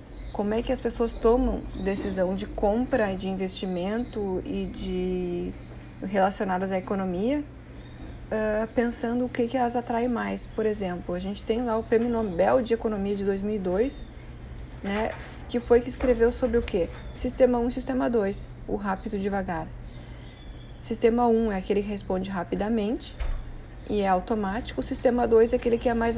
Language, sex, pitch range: Portuguese, female, 190-235 Hz